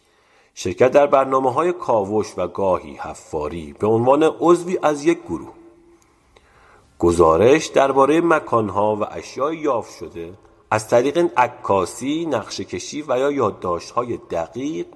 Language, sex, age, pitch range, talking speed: Persian, male, 50-69, 130-185 Hz, 120 wpm